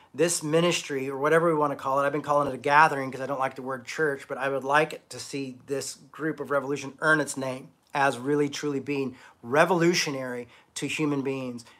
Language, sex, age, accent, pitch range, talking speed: English, male, 40-59, American, 130-155 Hz, 225 wpm